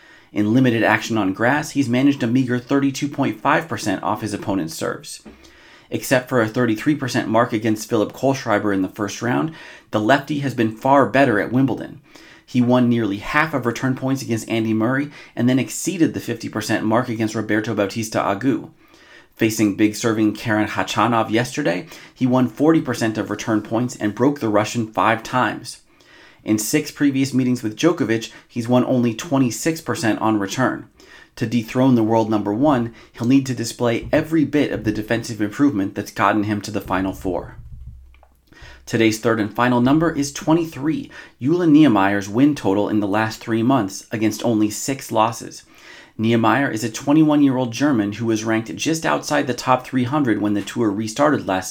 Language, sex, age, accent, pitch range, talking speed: English, male, 30-49, American, 110-135 Hz, 170 wpm